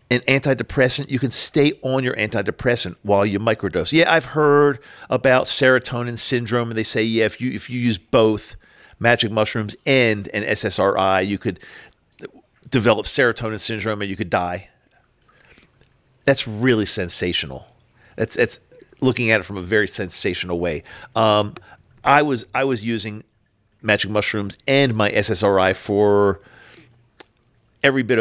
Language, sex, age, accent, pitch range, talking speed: English, male, 50-69, American, 100-125 Hz, 145 wpm